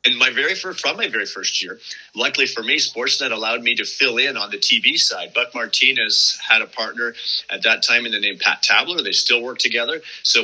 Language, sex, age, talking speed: English, male, 30-49, 235 wpm